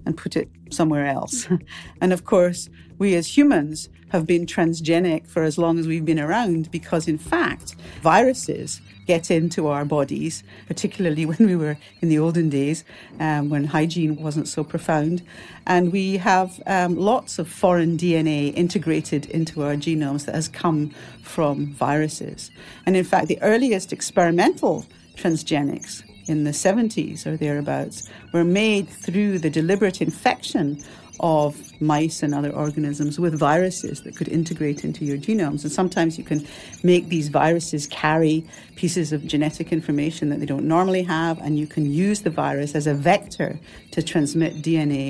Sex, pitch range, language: female, 145-175 Hz, English